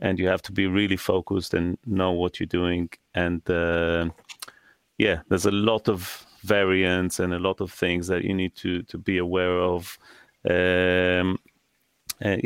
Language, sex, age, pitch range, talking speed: English, male, 30-49, 85-95 Hz, 165 wpm